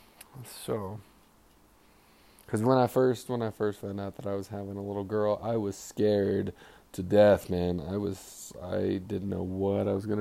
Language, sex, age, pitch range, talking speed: English, male, 20-39, 90-105 Hz, 190 wpm